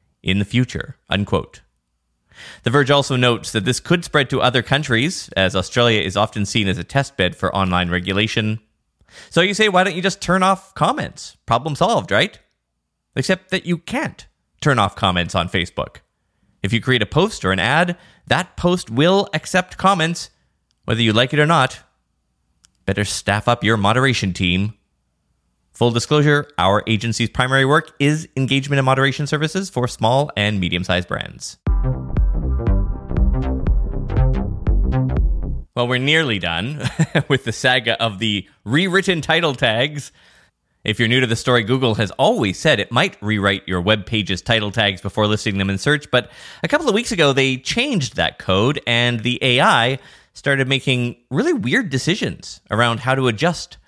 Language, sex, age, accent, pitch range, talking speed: English, male, 20-39, American, 95-140 Hz, 165 wpm